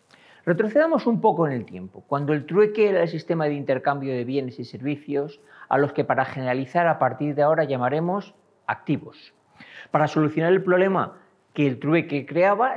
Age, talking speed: 40-59, 175 wpm